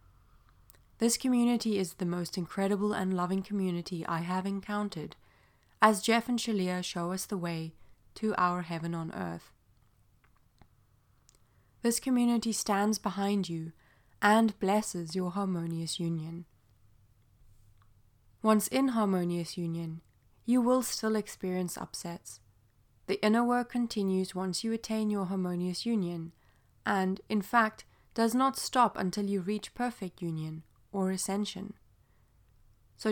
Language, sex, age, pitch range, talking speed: English, female, 20-39, 160-220 Hz, 125 wpm